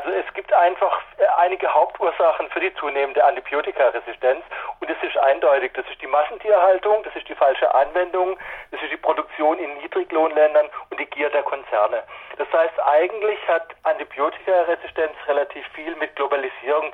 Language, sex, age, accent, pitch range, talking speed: German, male, 40-59, German, 150-180 Hz, 150 wpm